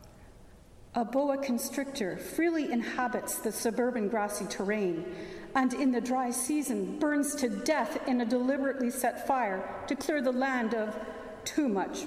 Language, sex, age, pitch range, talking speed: English, female, 50-69, 210-295 Hz, 145 wpm